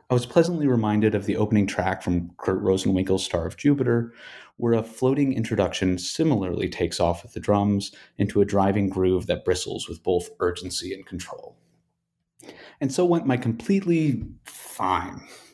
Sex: male